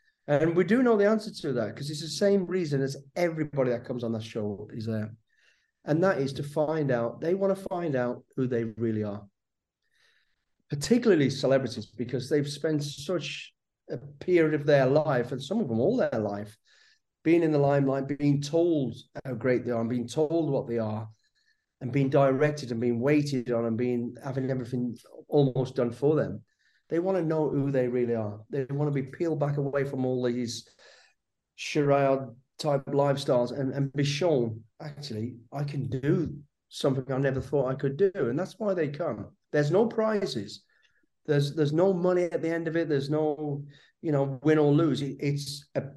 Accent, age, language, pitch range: British, 40-59, English, 125-155 Hz